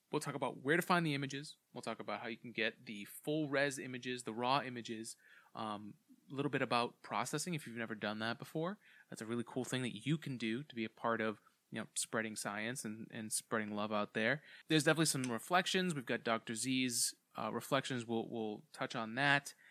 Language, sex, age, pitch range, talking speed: English, male, 20-39, 115-145 Hz, 220 wpm